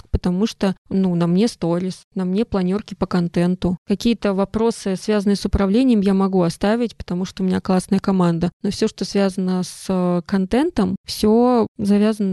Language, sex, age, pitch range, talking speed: Russian, female, 20-39, 190-220 Hz, 160 wpm